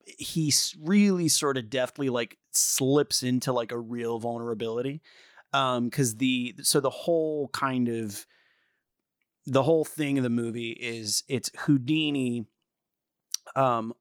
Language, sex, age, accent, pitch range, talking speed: English, male, 30-49, American, 115-150 Hz, 130 wpm